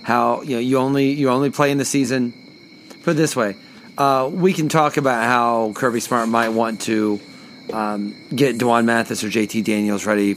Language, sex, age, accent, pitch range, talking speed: English, male, 30-49, American, 110-150 Hz, 195 wpm